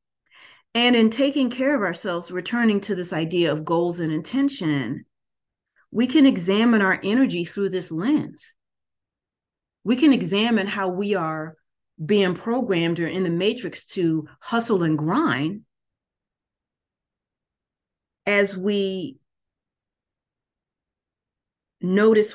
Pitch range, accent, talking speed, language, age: 165-205 Hz, American, 110 wpm, English, 40-59